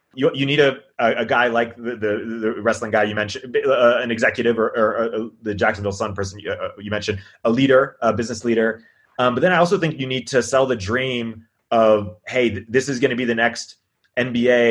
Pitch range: 105-120 Hz